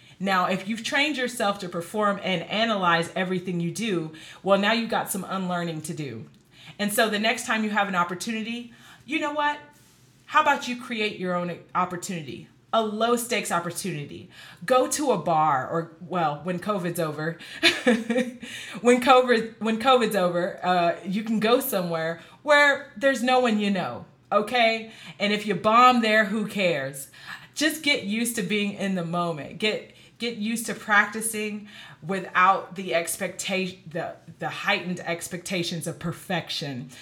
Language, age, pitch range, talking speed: English, 30-49, 170-230 Hz, 160 wpm